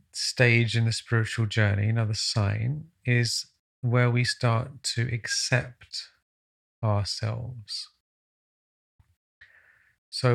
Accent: British